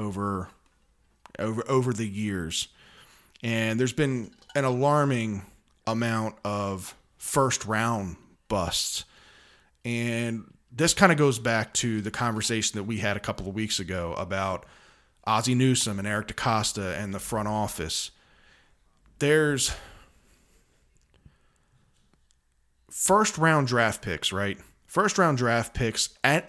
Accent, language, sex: American, English, male